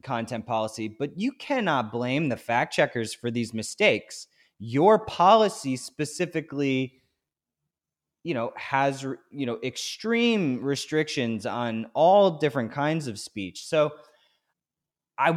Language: English